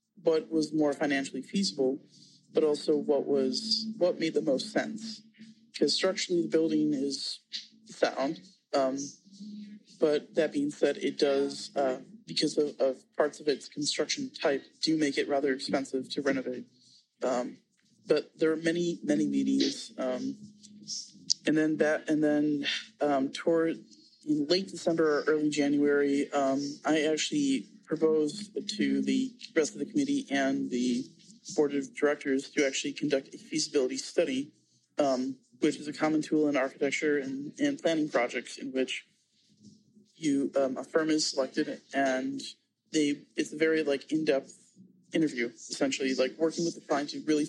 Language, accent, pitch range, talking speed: English, American, 140-210 Hz, 155 wpm